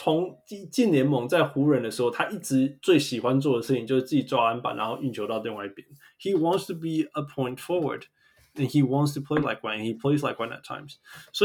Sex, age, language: male, 20-39, Chinese